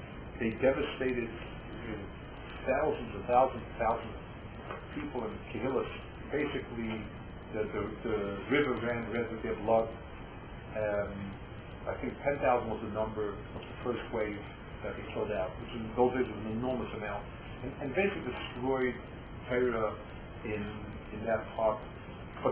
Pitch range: 110-130 Hz